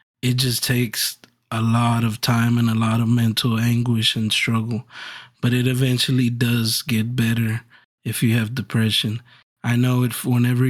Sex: male